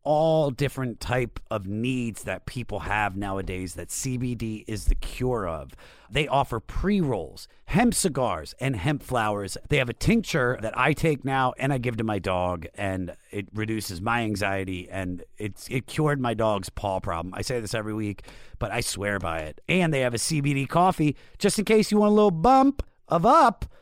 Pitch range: 110-165 Hz